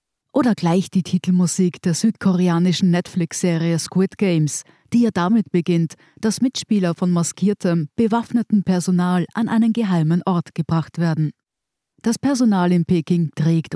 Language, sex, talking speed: German, female, 130 wpm